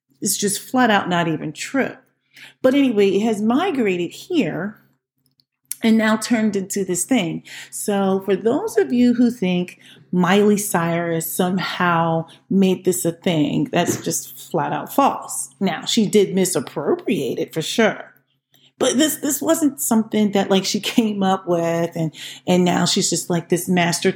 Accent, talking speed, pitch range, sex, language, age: American, 160 wpm, 170-245 Hz, female, English, 40-59